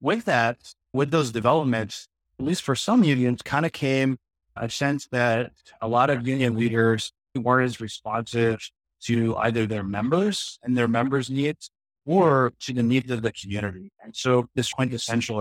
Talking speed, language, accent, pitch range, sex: 170 wpm, English, American, 105-125 Hz, male